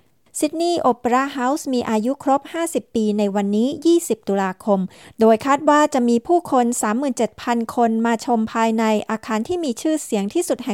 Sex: female